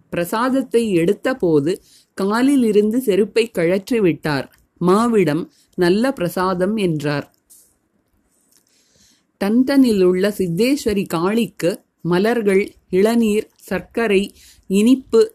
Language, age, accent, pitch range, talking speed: Tamil, 30-49, native, 180-225 Hz, 65 wpm